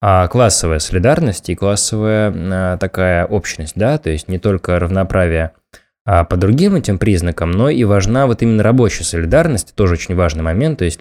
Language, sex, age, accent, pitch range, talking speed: Russian, male, 20-39, native, 90-110 Hz, 160 wpm